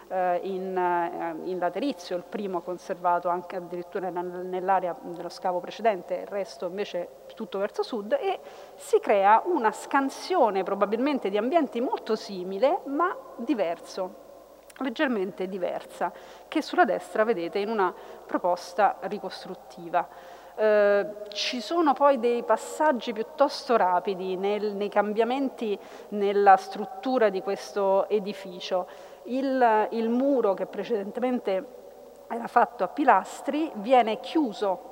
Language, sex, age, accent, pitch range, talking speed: Italian, female, 40-59, native, 185-255 Hz, 115 wpm